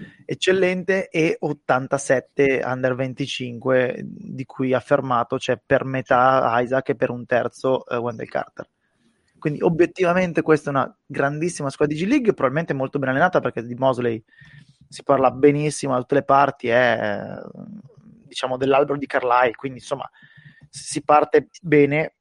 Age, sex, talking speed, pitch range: 20-39, male, 150 wpm, 130-170 Hz